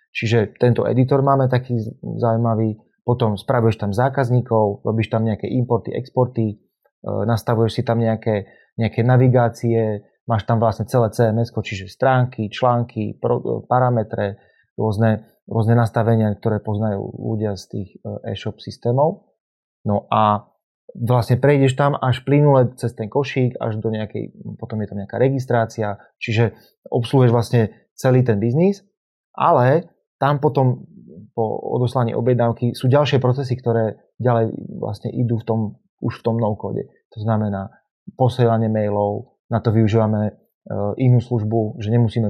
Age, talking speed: 30-49, 140 wpm